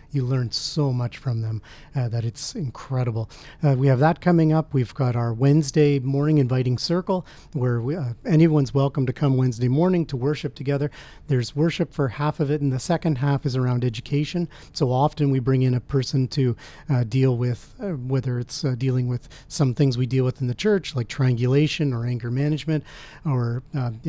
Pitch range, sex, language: 130-150 Hz, male, English